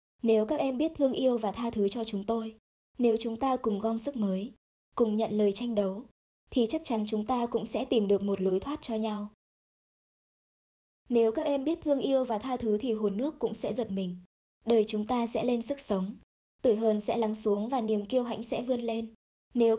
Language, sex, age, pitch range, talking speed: Vietnamese, male, 20-39, 210-250 Hz, 225 wpm